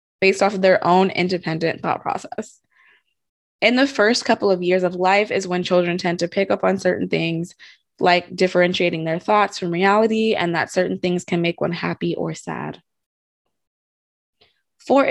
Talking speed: 170 wpm